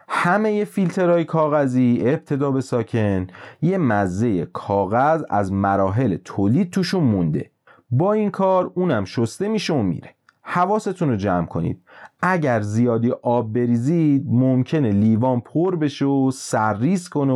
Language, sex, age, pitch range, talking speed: Persian, male, 30-49, 105-155 Hz, 130 wpm